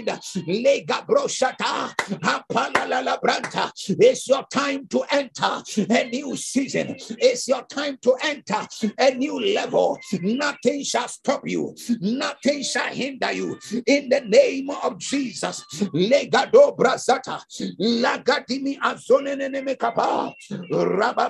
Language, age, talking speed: English, 60-79, 120 wpm